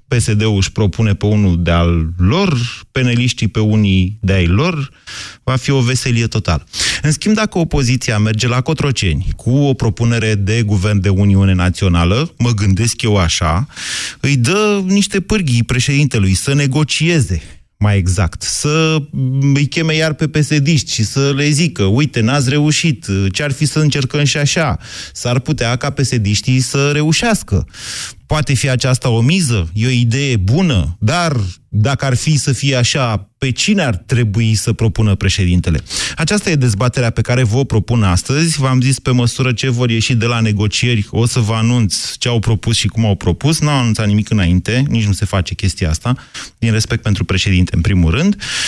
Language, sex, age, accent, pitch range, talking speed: Romanian, male, 30-49, native, 105-145 Hz, 175 wpm